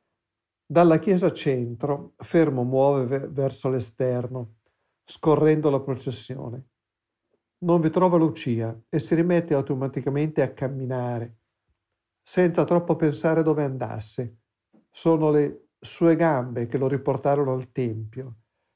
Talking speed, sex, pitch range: 110 wpm, male, 120-150 Hz